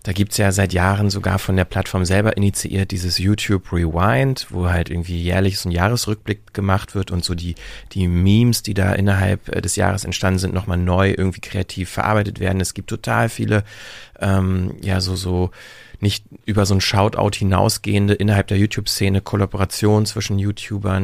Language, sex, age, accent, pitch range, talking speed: German, male, 30-49, German, 95-105 Hz, 175 wpm